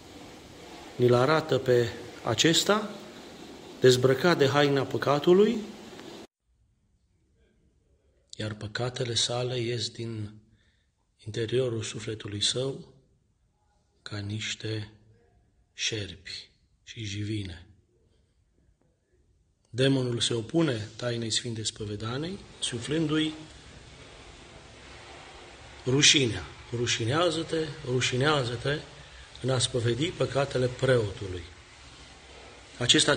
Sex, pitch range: male, 110-150 Hz